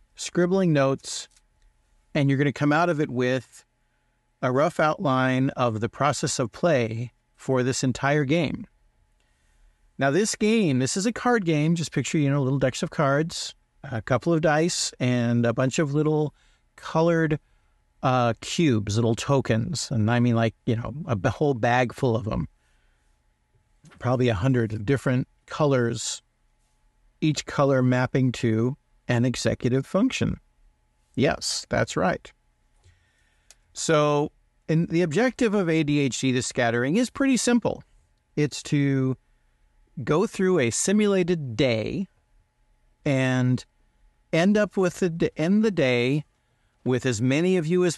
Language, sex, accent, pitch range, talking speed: English, male, American, 120-160 Hz, 140 wpm